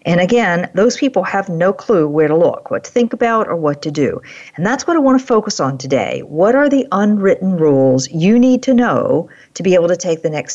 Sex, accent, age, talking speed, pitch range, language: female, American, 50-69, 245 wpm, 145-200 Hz, English